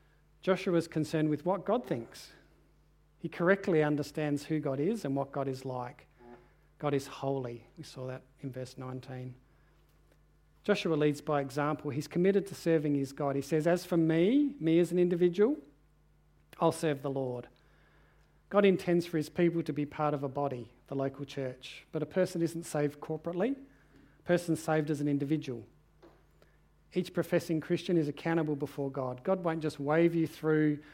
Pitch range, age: 140-170 Hz, 40-59